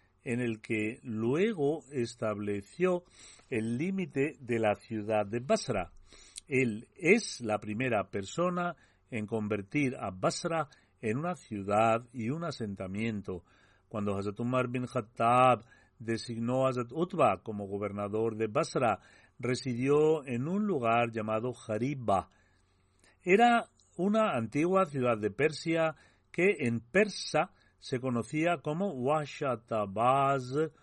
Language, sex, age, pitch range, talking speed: Spanish, male, 40-59, 105-140 Hz, 115 wpm